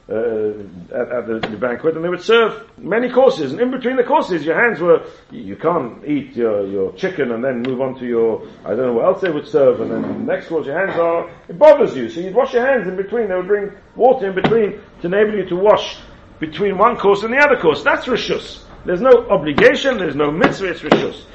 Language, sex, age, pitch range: English, male, 40-59, 155-235 Hz